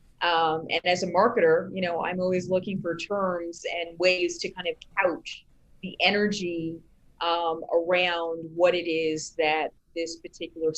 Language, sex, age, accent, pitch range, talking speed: English, female, 30-49, American, 165-195 Hz, 155 wpm